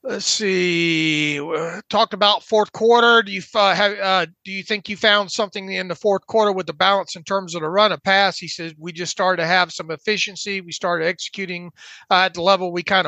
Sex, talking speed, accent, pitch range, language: male, 225 wpm, American, 180-205 Hz, English